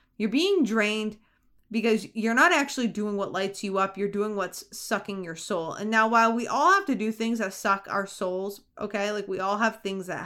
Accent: American